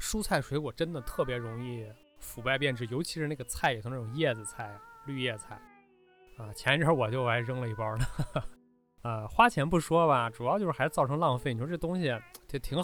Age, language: 20-39, Chinese